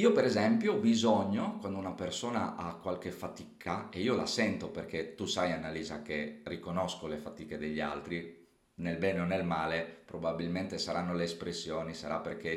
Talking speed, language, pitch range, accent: 170 wpm, Italian, 80-100 Hz, native